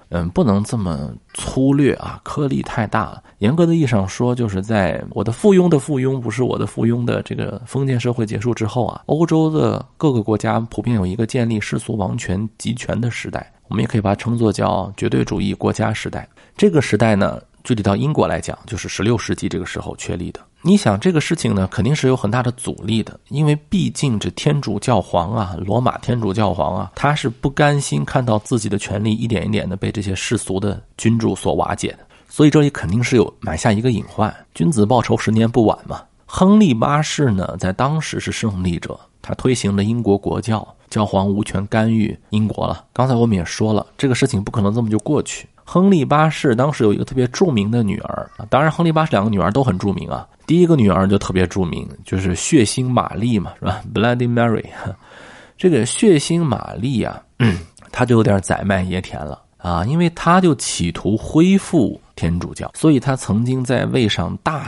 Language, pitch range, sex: Chinese, 100-130 Hz, male